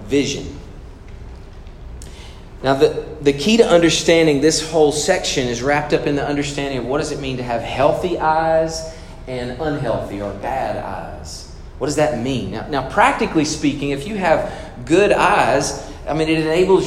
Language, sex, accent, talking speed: English, male, American, 165 wpm